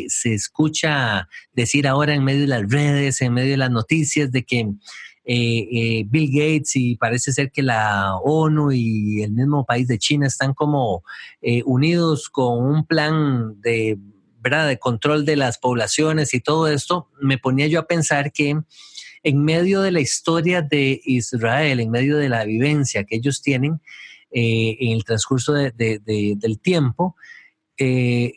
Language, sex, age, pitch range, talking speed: English, male, 30-49, 120-155 Hz, 160 wpm